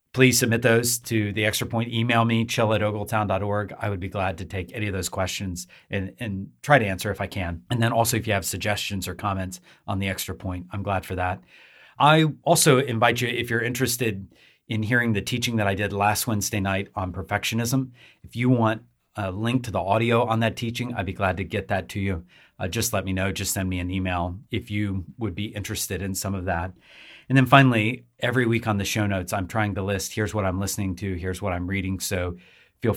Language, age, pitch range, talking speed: English, 40-59, 95-115 Hz, 235 wpm